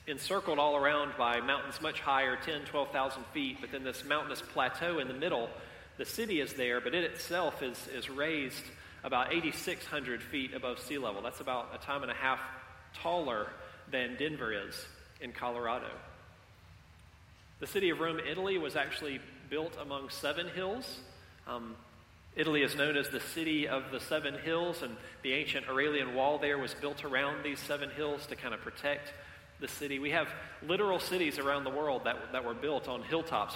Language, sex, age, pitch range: English, male, 40-59, 125-160 Hz